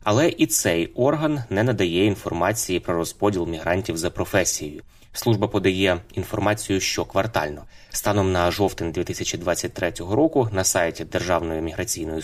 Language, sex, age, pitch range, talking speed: Ukrainian, male, 20-39, 85-110 Hz, 125 wpm